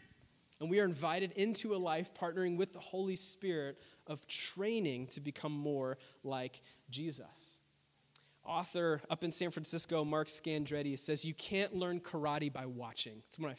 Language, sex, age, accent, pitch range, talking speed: English, male, 30-49, American, 150-190 Hz, 165 wpm